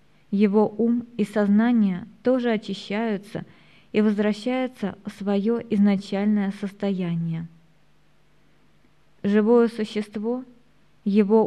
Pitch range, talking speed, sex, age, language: 195-225 Hz, 80 wpm, female, 20-39, Russian